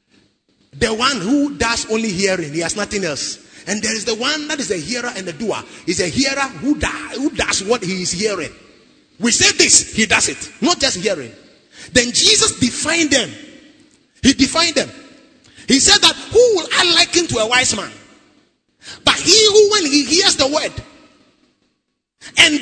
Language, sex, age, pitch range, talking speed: English, male, 30-49, 220-320 Hz, 180 wpm